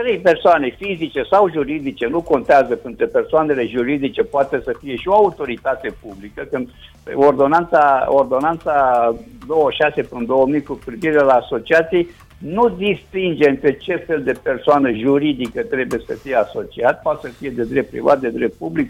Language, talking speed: Romanian, 145 wpm